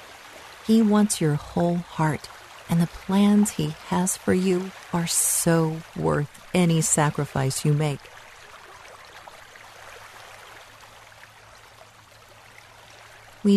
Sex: female